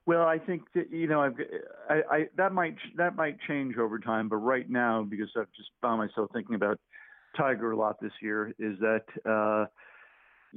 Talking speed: 195 wpm